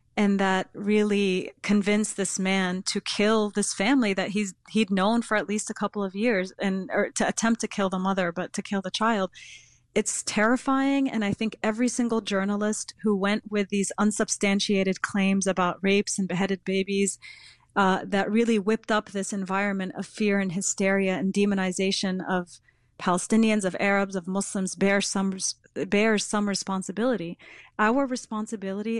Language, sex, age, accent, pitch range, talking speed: English, female, 30-49, American, 195-220 Hz, 165 wpm